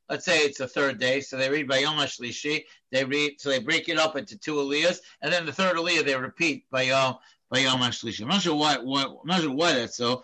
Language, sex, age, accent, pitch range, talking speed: English, male, 60-79, American, 130-165 Hz, 225 wpm